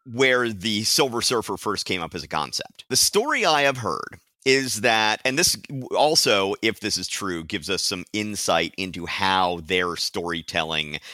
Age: 50-69